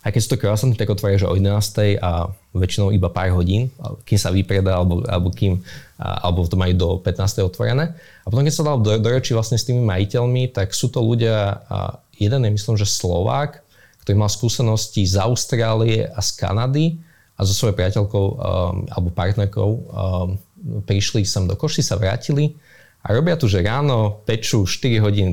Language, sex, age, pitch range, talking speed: Slovak, male, 20-39, 95-115 Hz, 185 wpm